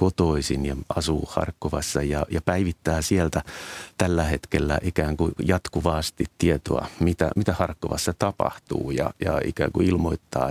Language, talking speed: Finnish, 130 wpm